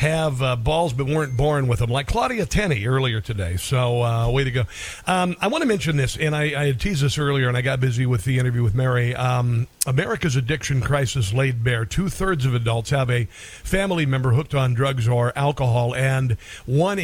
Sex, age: male, 50-69